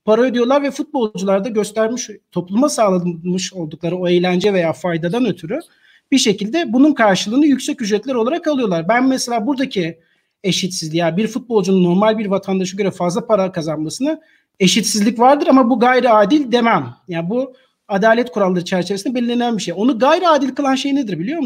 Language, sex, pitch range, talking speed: Turkish, male, 190-255 Hz, 160 wpm